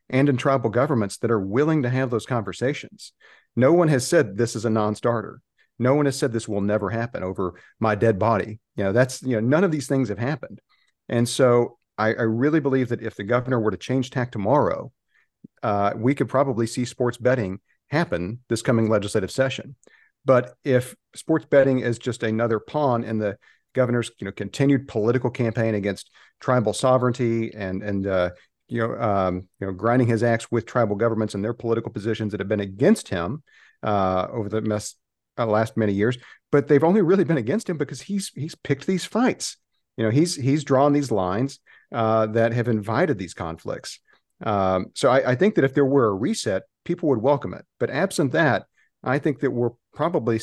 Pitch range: 110-135 Hz